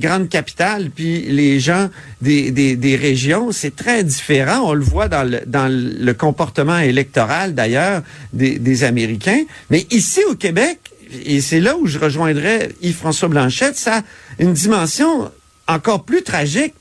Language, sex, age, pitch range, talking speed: French, male, 50-69, 150-215 Hz, 160 wpm